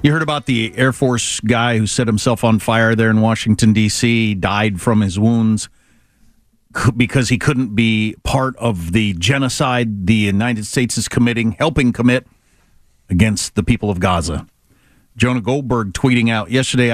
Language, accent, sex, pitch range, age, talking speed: English, American, male, 110-145 Hz, 50-69, 160 wpm